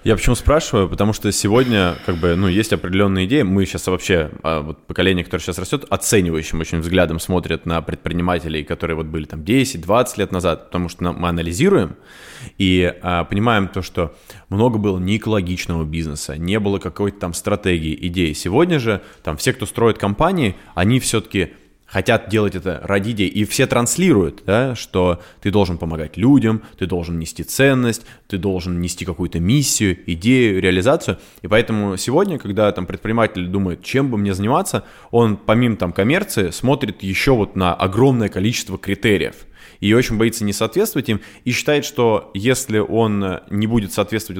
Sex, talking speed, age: male, 160 wpm, 20-39